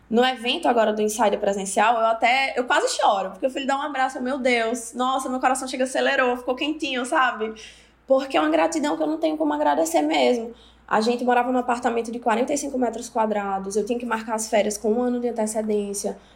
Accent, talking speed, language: Brazilian, 215 wpm, Portuguese